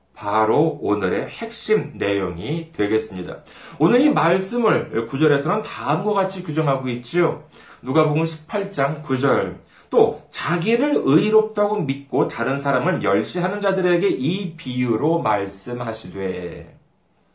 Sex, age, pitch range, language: male, 40-59, 130-205 Hz, Korean